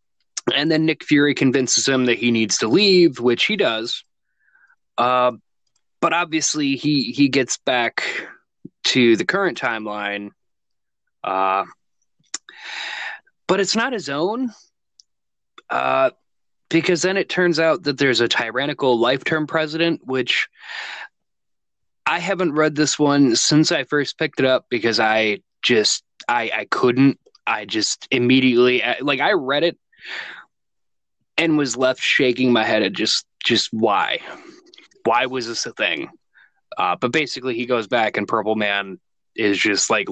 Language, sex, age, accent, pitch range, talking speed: English, male, 20-39, American, 115-160 Hz, 140 wpm